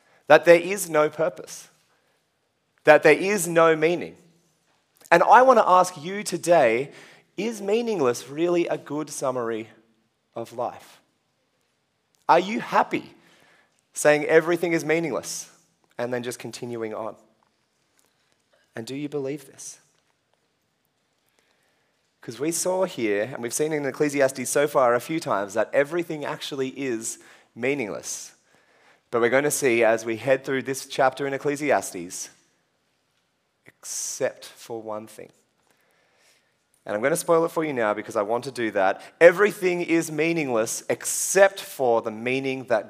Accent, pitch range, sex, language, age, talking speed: Australian, 120-165 Hz, male, English, 30-49, 140 wpm